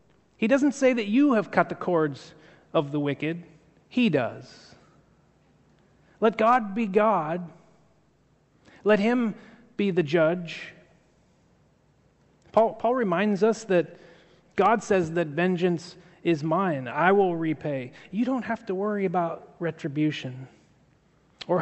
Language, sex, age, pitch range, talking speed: English, male, 30-49, 165-205 Hz, 125 wpm